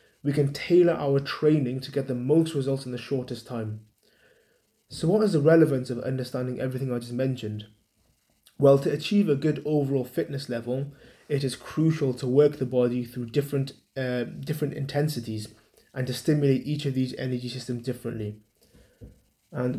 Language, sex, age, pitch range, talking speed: English, male, 20-39, 125-150 Hz, 165 wpm